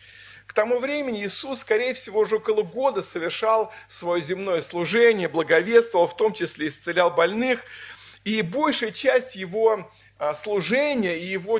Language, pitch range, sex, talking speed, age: Russian, 155-225 Hz, male, 135 wpm, 50-69